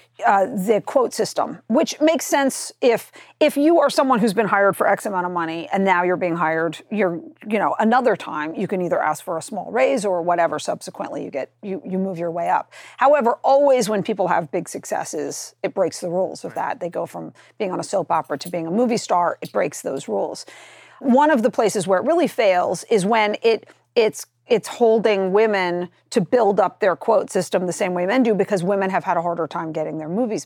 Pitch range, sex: 180-235 Hz, female